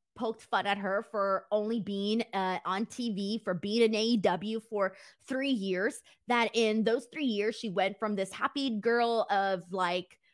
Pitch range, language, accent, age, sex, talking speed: 200-275 Hz, English, American, 20-39, female, 175 wpm